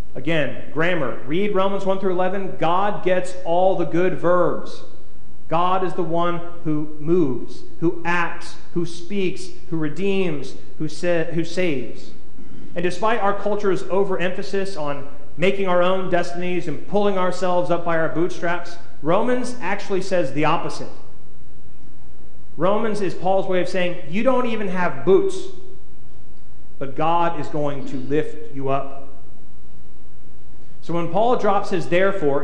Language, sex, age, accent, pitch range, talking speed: English, male, 30-49, American, 160-195 Hz, 140 wpm